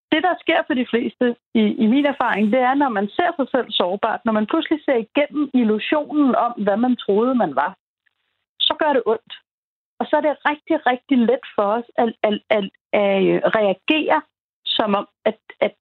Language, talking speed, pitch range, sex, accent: Danish, 180 wpm, 210-275 Hz, female, native